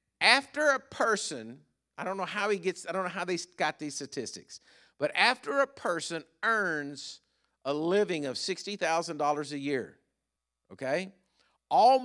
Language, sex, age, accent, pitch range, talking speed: English, male, 50-69, American, 150-195 Hz, 160 wpm